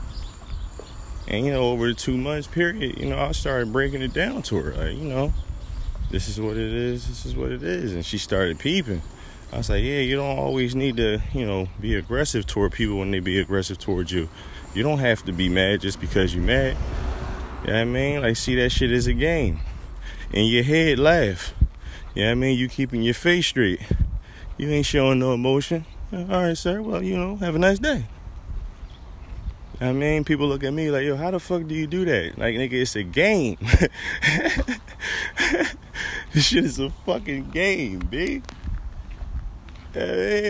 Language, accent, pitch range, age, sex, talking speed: English, American, 90-145 Hz, 20-39, male, 200 wpm